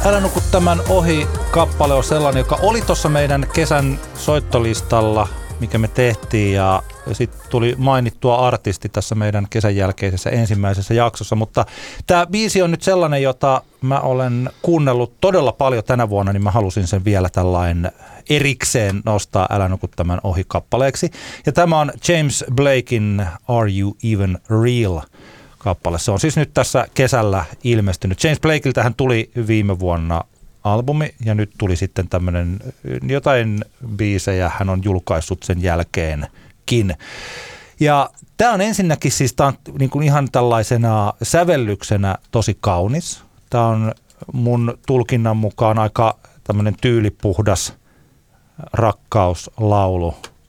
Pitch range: 100-135 Hz